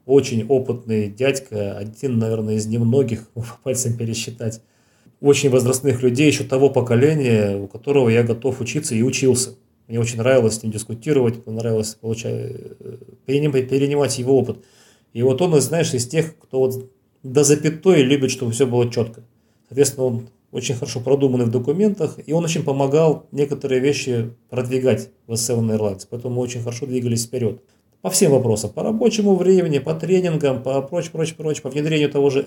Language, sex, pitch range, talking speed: Russian, male, 115-150 Hz, 165 wpm